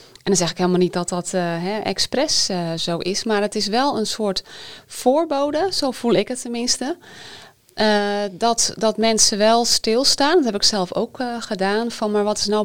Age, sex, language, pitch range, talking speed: 30-49, female, Dutch, 190-240 Hz, 210 wpm